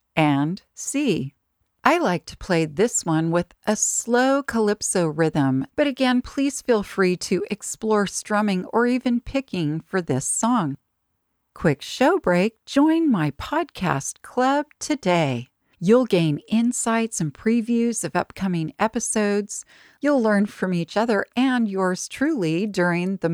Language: English